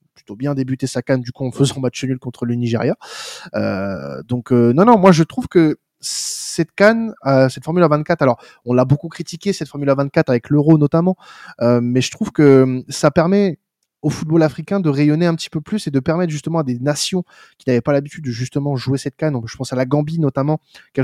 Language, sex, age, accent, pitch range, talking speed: French, male, 20-39, French, 125-165 Hz, 235 wpm